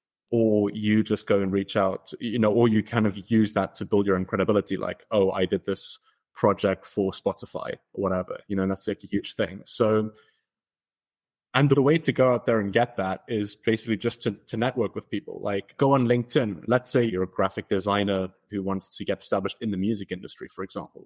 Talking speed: 220 wpm